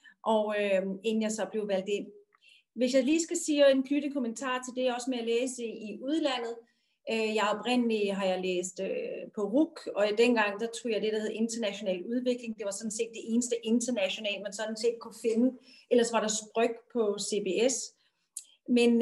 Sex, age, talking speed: female, 40-59, 200 wpm